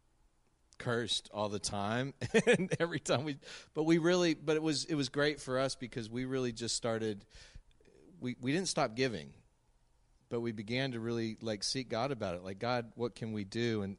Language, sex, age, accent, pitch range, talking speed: English, male, 40-59, American, 100-125 Hz, 195 wpm